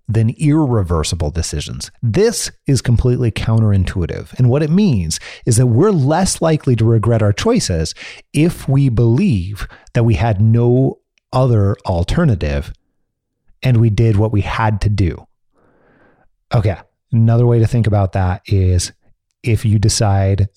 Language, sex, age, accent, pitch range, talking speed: English, male, 30-49, American, 100-125 Hz, 140 wpm